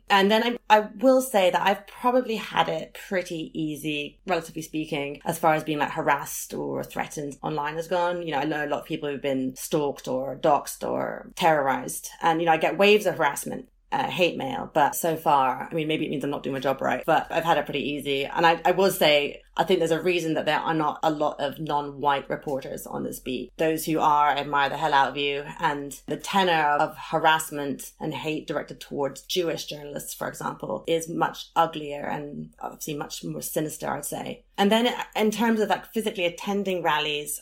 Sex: female